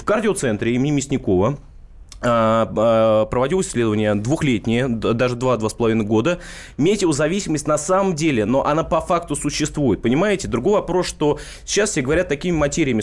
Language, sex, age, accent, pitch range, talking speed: Russian, male, 20-39, native, 120-170 Hz, 130 wpm